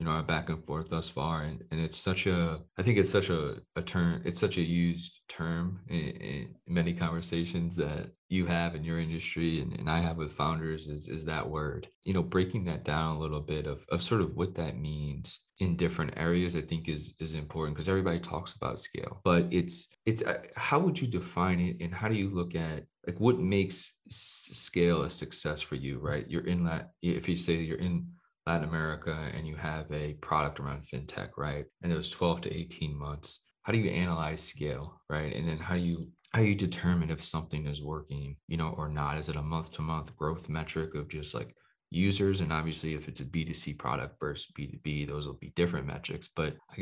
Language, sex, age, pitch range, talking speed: English, male, 20-39, 75-85 Hz, 220 wpm